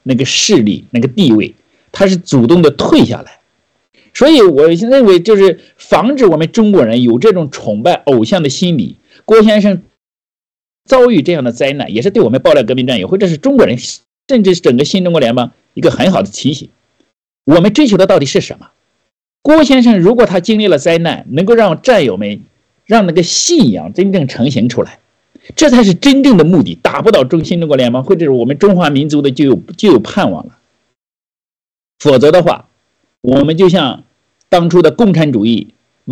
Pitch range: 140-220 Hz